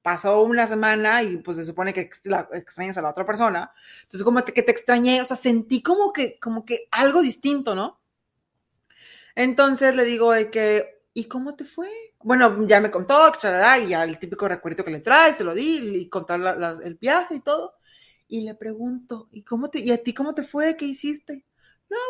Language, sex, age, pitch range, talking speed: Spanish, female, 30-49, 195-270 Hz, 205 wpm